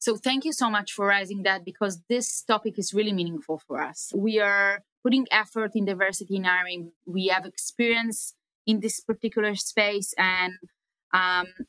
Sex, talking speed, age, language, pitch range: female, 170 wpm, 20-39, English, 180-225 Hz